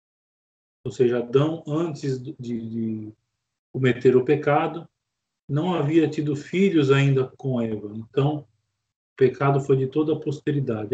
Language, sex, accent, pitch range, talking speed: Portuguese, male, Brazilian, 120-165 Hz, 130 wpm